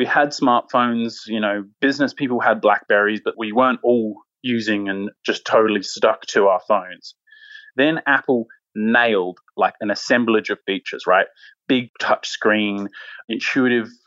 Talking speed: 145 wpm